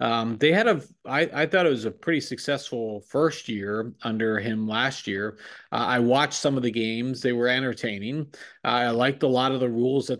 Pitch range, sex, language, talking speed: 120-145 Hz, male, English, 220 wpm